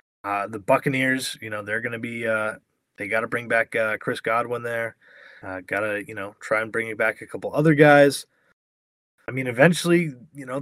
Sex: male